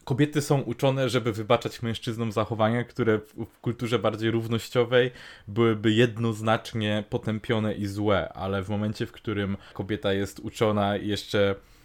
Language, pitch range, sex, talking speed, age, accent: Polish, 105-120 Hz, male, 135 wpm, 20-39, native